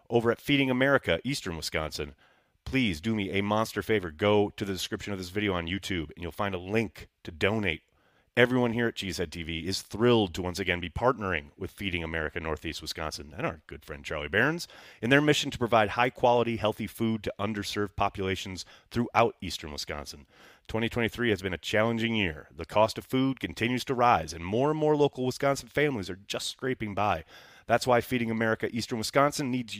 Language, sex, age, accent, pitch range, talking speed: English, male, 30-49, American, 90-120 Hz, 195 wpm